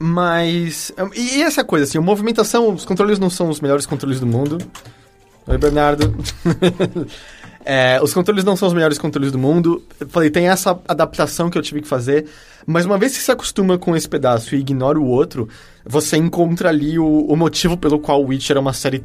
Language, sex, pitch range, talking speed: English, male, 140-190 Hz, 200 wpm